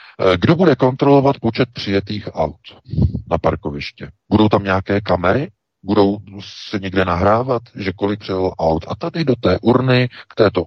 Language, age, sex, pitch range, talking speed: Czech, 50-69, male, 85-105 Hz, 150 wpm